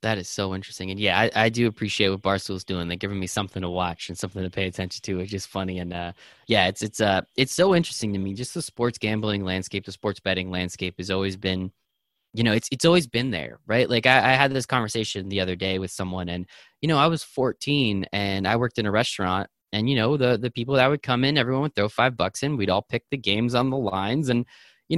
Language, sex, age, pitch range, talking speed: English, male, 20-39, 100-135 Hz, 265 wpm